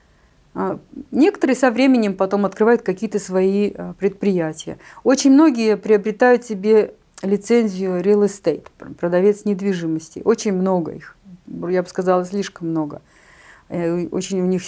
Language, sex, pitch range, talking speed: Russian, female, 185-240 Hz, 115 wpm